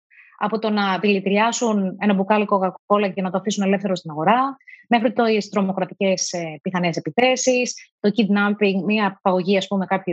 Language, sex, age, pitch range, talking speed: Greek, female, 30-49, 195-290 Hz, 155 wpm